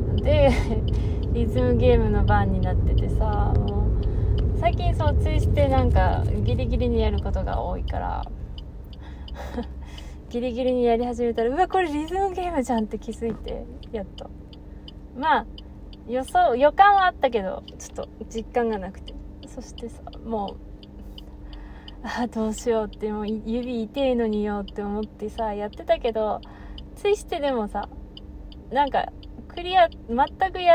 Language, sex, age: Japanese, female, 20-39